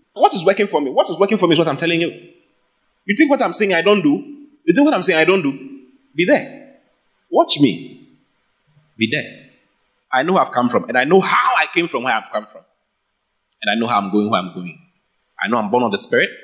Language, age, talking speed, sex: English, 30-49, 255 wpm, male